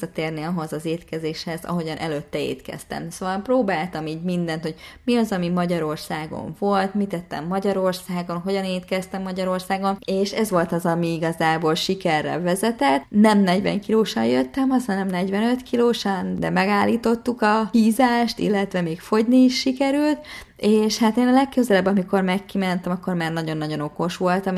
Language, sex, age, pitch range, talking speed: Hungarian, female, 20-39, 160-210 Hz, 145 wpm